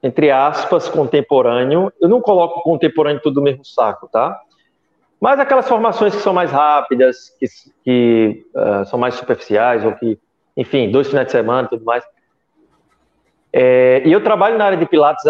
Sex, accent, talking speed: male, Brazilian, 170 wpm